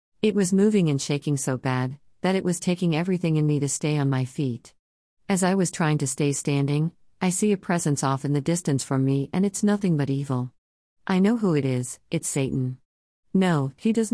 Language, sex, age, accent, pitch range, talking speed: English, female, 50-69, American, 130-180 Hz, 215 wpm